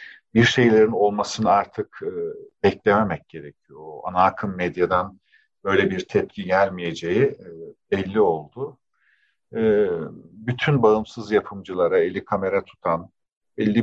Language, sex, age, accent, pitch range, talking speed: Turkish, male, 50-69, native, 85-130 Hz, 95 wpm